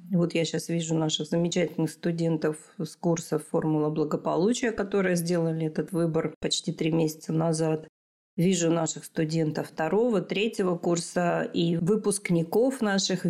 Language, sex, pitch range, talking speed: Russian, female, 165-195 Hz, 125 wpm